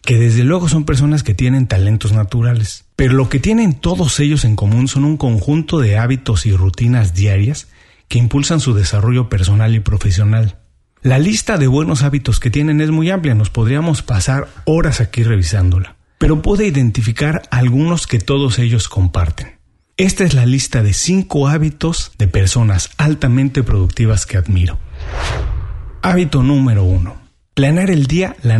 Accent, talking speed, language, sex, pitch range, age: Mexican, 160 wpm, Spanish, male, 105-150 Hz, 40-59